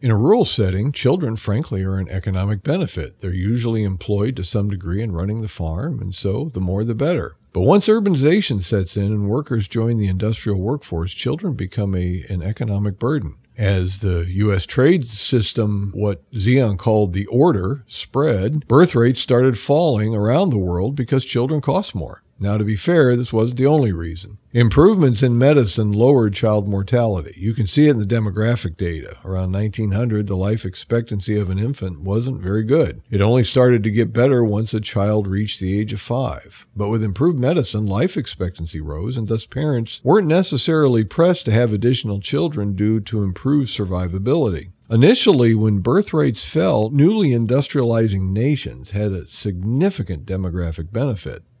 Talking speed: 170 wpm